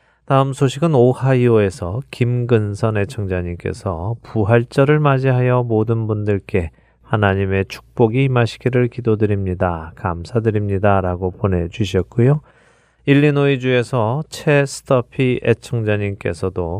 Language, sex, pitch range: Korean, male, 95-125 Hz